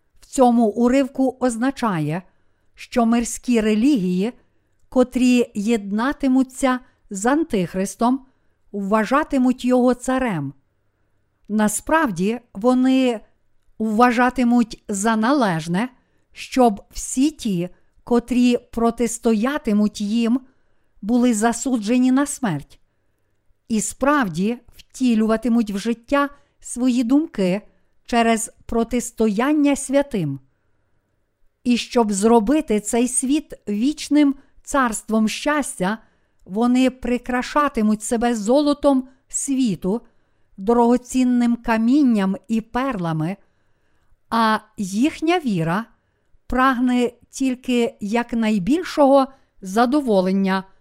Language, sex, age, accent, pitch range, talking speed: Ukrainian, female, 50-69, native, 210-255 Hz, 70 wpm